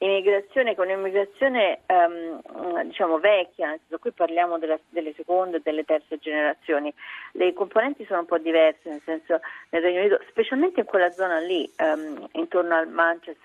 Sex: female